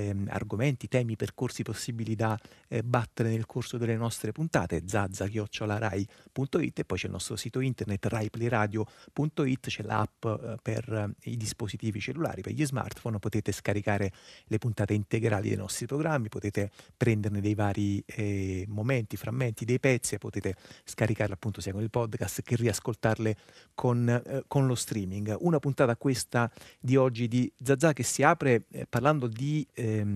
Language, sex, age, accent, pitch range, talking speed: Italian, male, 30-49, native, 105-125 Hz, 150 wpm